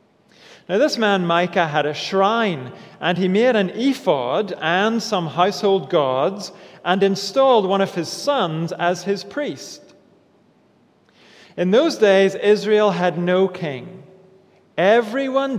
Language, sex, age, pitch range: English, male, 40-59, 175-245 Hz